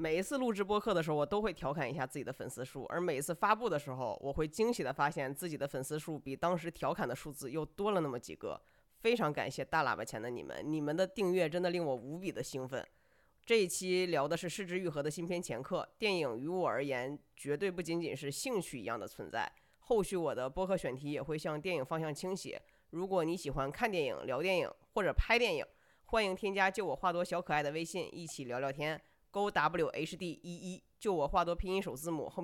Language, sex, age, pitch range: Chinese, female, 20-39, 150-185 Hz